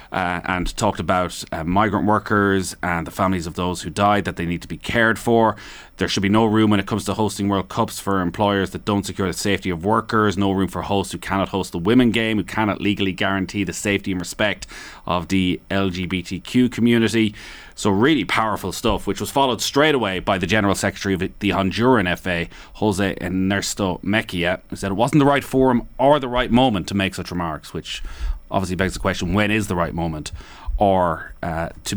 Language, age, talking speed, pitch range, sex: English, 30-49, 210 wpm, 90-105 Hz, male